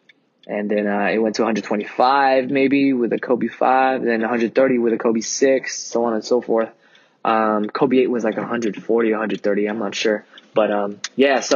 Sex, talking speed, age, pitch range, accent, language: male, 190 wpm, 20-39, 120-185 Hz, American, English